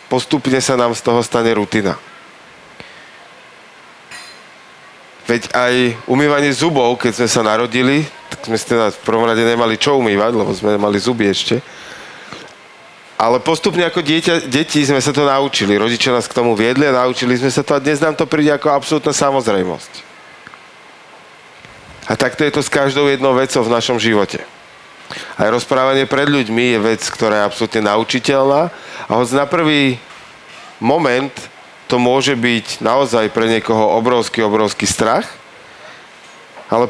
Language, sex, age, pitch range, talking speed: Slovak, male, 40-59, 120-145 Hz, 150 wpm